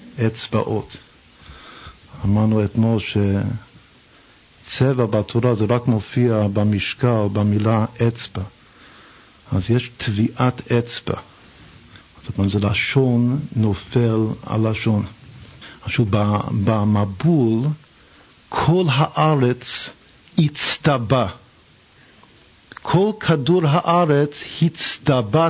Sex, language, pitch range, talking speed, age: male, Hebrew, 110-145 Hz, 75 wpm, 50-69